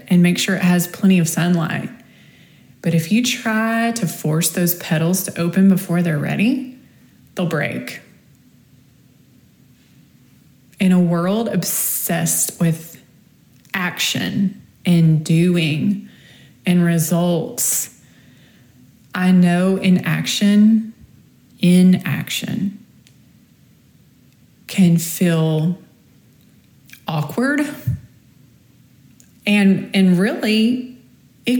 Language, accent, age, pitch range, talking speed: English, American, 20-39, 165-210 Hz, 85 wpm